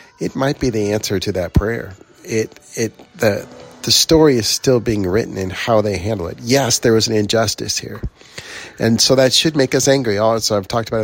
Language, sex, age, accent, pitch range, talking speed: English, male, 40-59, American, 100-120 Hz, 210 wpm